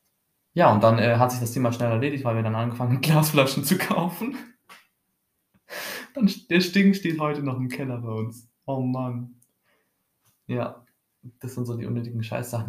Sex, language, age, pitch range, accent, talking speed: male, German, 20-39, 110-135 Hz, German, 175 wpm